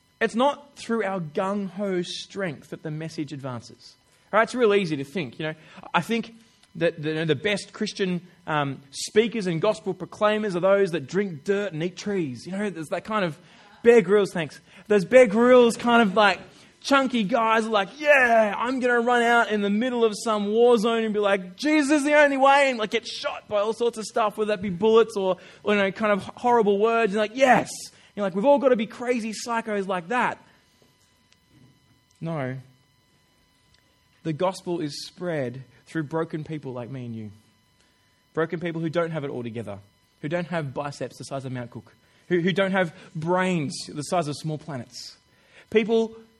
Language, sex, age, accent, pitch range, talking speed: English, male, 20-39, Australian, 155-220 Hz, 200 wpm